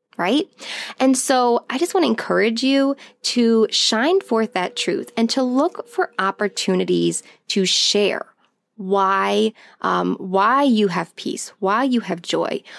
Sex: female